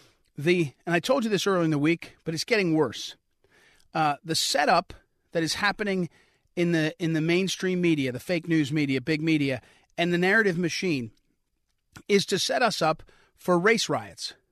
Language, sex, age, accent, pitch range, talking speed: English, male, 40-59, American, 160-210 Hz, 180 wpm